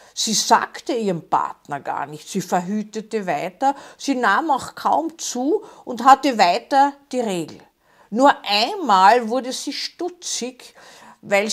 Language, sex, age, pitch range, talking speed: German, female, 50-69, 205-270 Hz, 130 wpm